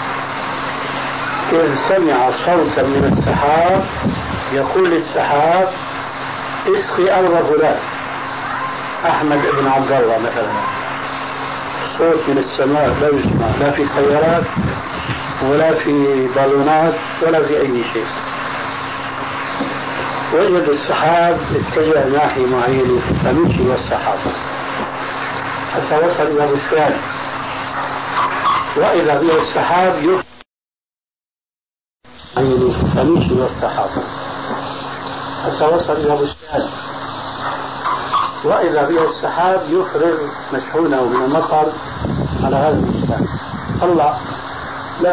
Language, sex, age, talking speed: Arabic, male, 60-79, 80 wpm